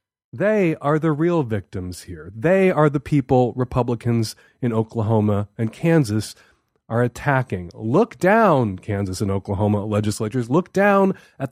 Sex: male